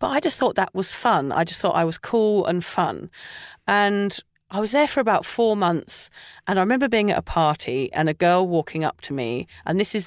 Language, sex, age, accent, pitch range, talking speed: English, female, 40-59, British, 165-235 Hz, 240 wpm